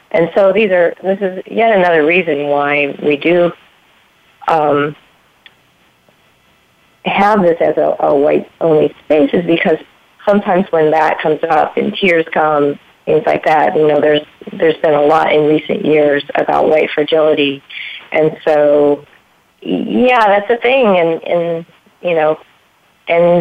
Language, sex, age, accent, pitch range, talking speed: English, female, 40-59, American, 145-175 Hz, 145 wpm